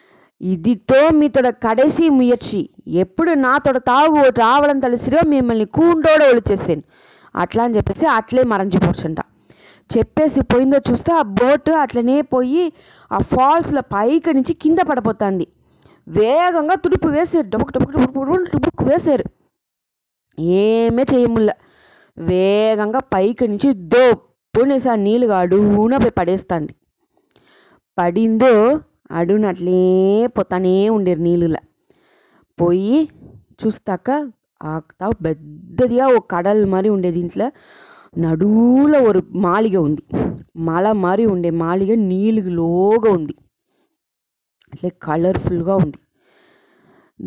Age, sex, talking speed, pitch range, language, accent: 20-39, female, 70 wpm, 180-265 Hz, English, Indian